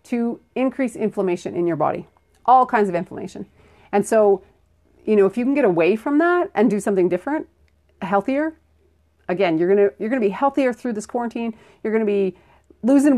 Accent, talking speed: American, 190 wpm